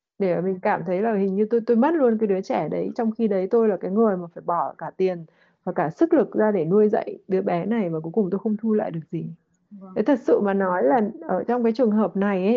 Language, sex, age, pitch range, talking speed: Vietnamese, female, 20-39, 195-240 Hz, 280 wpm